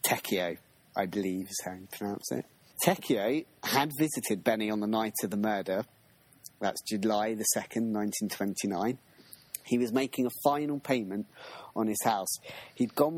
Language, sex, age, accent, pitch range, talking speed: English, male, 30-49, British, 105-130 Hz, 155 wpm